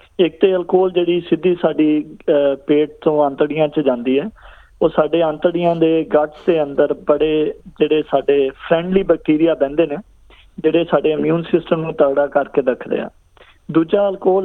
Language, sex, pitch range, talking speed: Punjabi, male, 150-180 Hz, 150 wpm